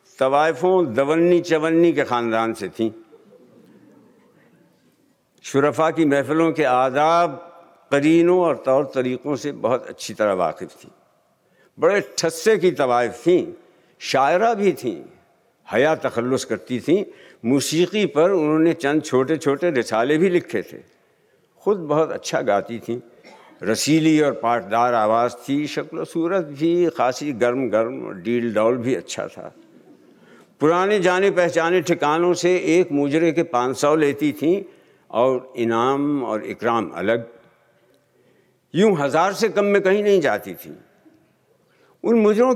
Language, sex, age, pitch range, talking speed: Hindi, male, 60-79, 130-175 Hz, 130 wpm